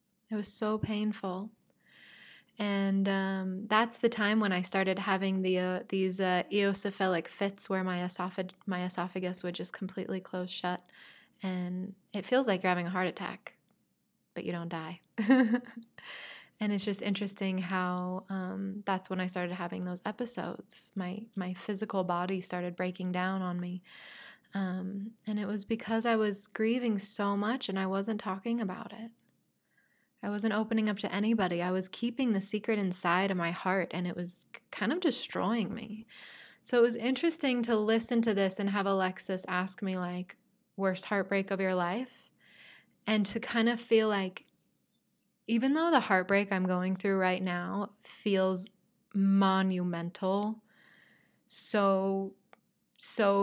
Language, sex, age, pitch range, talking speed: English, female, 20-39, 185-215 Hz, 155 wpm